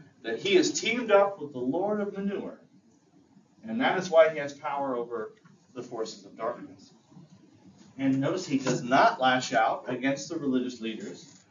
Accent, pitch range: American, 130-195 Hz